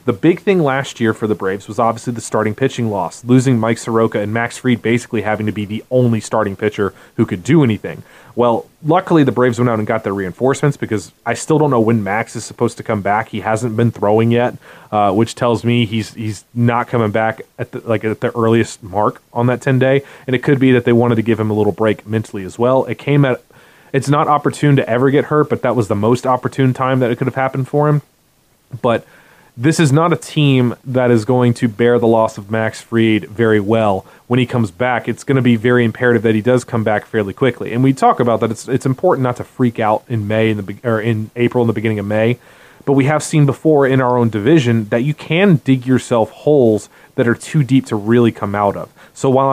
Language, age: English, 30-49